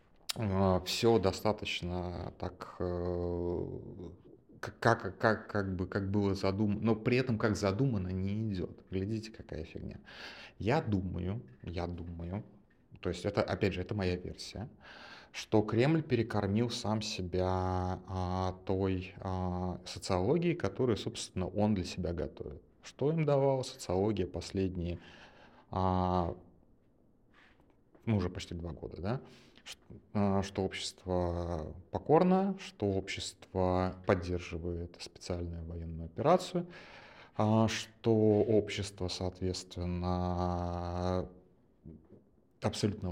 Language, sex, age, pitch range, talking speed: Russian, male, 30-49, 90-110 Hz, 95 wpm